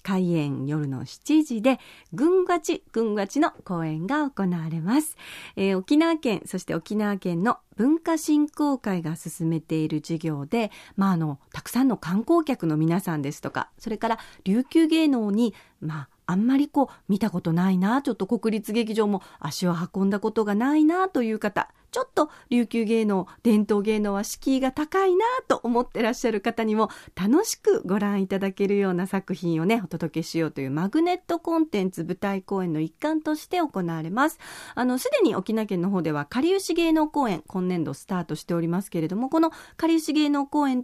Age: 40-59